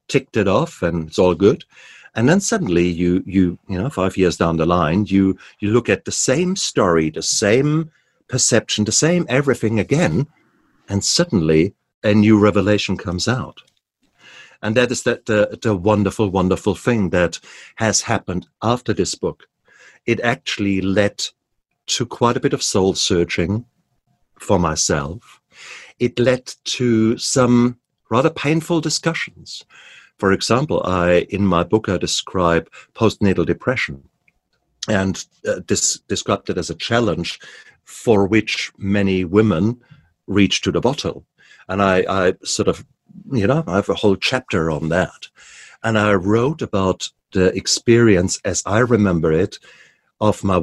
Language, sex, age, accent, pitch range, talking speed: English, male, 50-69, German, 90-120 Hz, 150 wpm